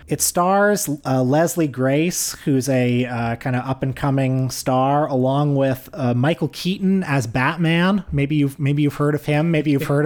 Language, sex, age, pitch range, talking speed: English, male, 30-49, 120-145 Hz, 175 wpm